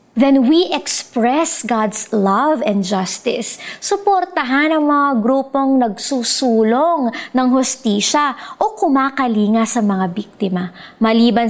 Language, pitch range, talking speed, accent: Filipino, 205-275 Hz, 105 wpm, native